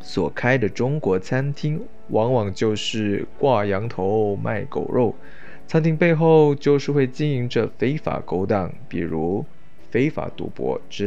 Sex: male